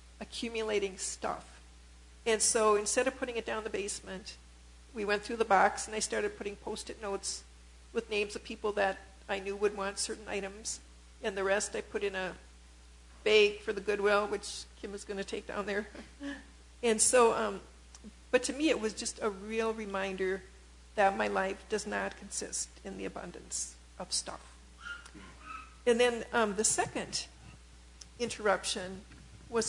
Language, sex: English, female